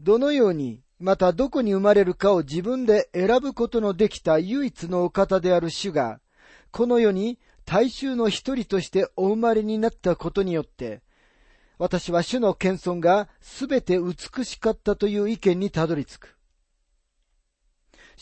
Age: 40-59